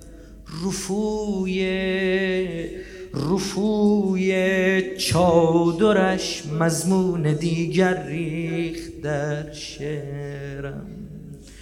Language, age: Arabic, 30-49